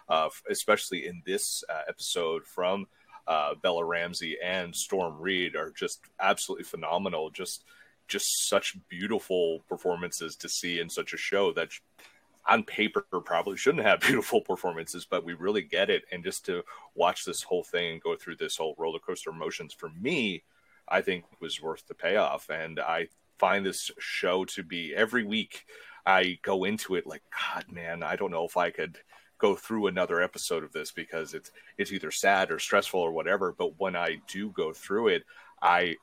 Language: English